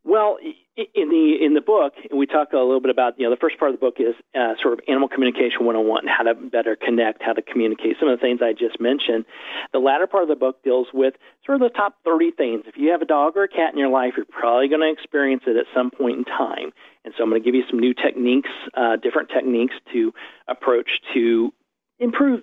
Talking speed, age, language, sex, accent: 250 wpm, 40-59, English, male, American